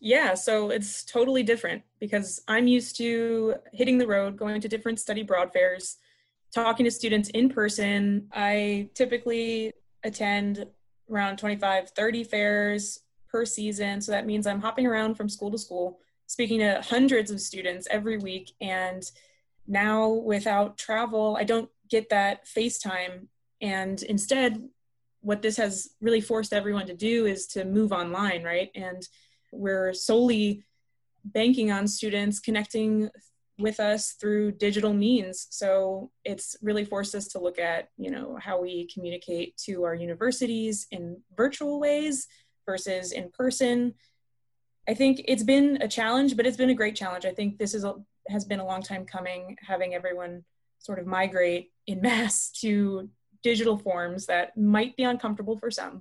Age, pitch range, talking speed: 20-39, 185-225 Hz, 155 wpm